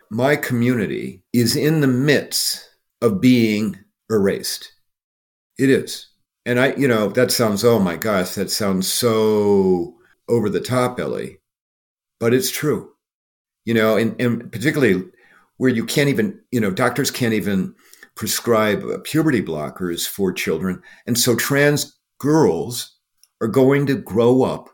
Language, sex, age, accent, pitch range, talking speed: English, male, 50-69, American, 100-125 Hz, 140 wpm